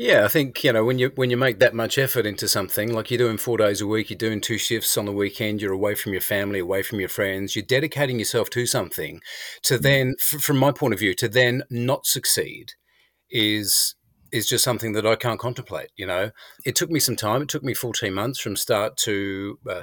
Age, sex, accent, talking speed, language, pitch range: 40-59, male, Australian, 240 wpm, English, 110-130 Hz